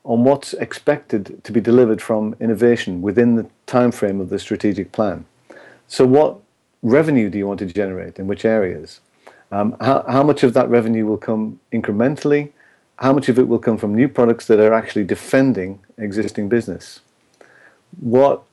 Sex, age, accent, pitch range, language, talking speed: male, 40-59, British, 105-125 Hz, English, 170 wpm